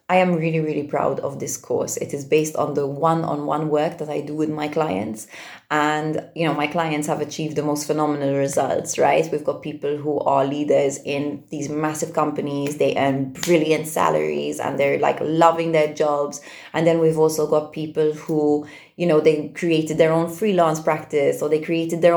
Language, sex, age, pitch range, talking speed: English, female, 20-39, 150-170 Hz, 195 wpm